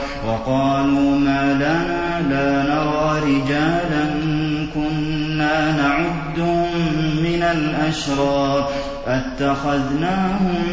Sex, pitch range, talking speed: male, 140-155 Hz, 60 wpm